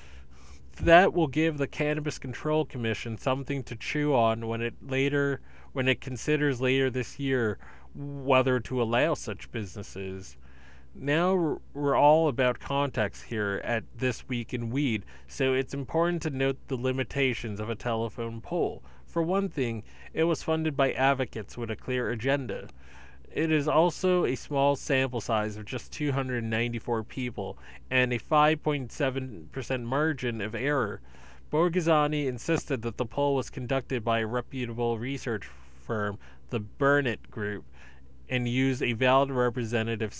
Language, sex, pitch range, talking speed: English, male, 110-140 Hz, 145 wpm